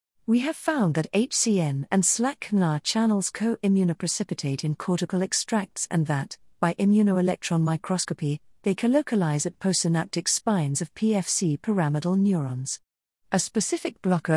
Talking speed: 125 wpm